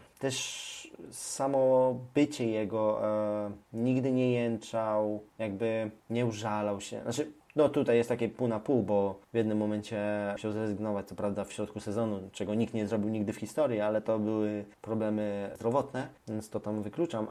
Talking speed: 165 wpm